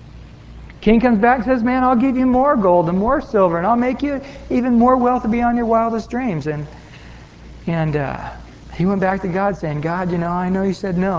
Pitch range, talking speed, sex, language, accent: 155-235 Hz, 225 wpm, male, English, American